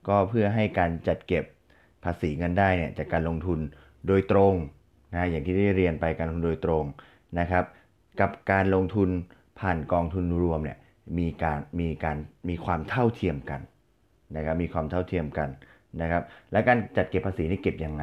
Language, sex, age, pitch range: Thai, male, 20-39, 85-100 Hz